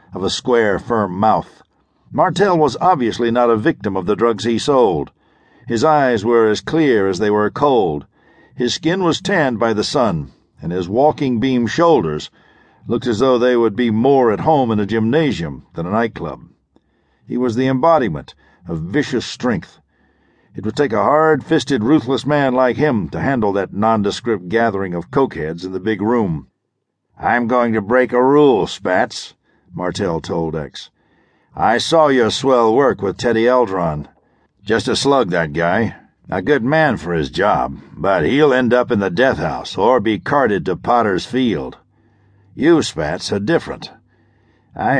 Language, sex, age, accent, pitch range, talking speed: English, male, 60-79, American, 105-130 Hz, 170 wpm